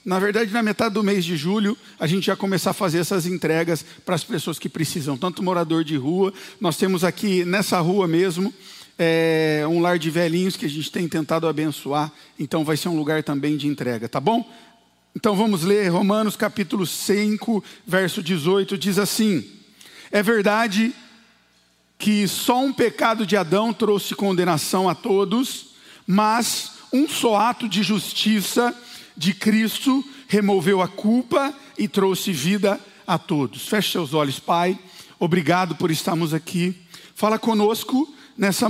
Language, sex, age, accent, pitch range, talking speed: Portuguese, male, 50-69, Brazilian, 175-215 Hz, 155 wpm